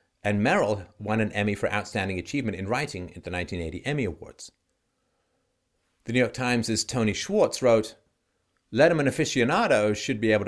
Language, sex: English, male